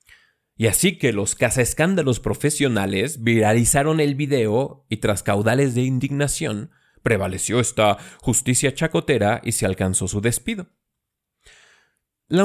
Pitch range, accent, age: 105-155 Hz, Mexican, 30-49